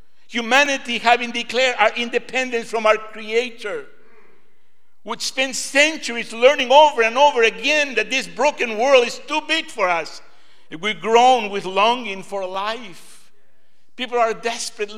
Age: 60-79